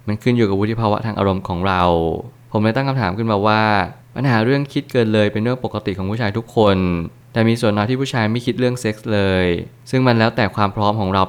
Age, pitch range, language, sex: 20-39, 100-120 Hz, Thai, male